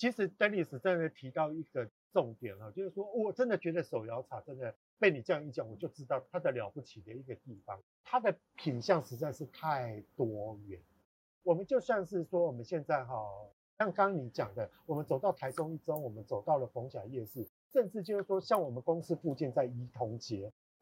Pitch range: 130-195 Hz